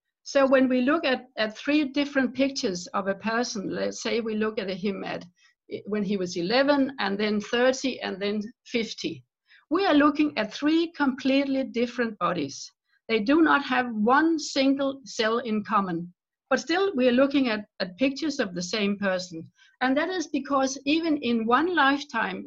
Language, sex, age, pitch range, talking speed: English, female, 60-79, 215-285 Hz, 175 wpm